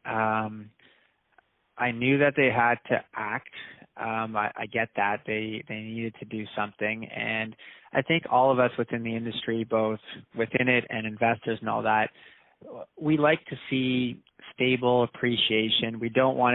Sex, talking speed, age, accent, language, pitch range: male, 165 wpm, 20-39, American, English, 110-120 Hz